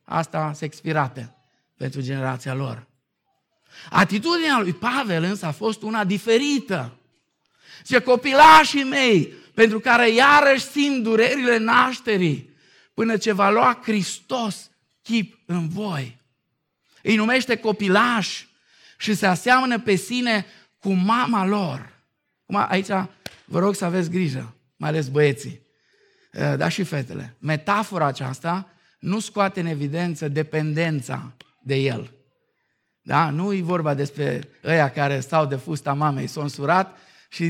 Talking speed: 125 wpm